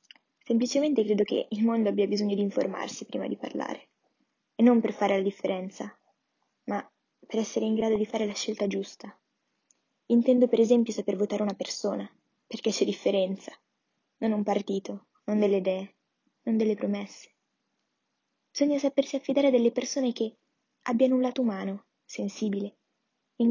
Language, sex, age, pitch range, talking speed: Italian, female, 10-29, 200-245 Hz, 155 wpm